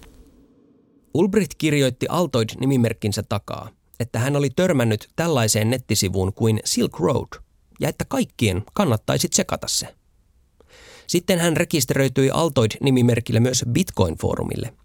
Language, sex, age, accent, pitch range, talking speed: Finnish, male, 30-49, native, 105-145 Hz, 100 wpm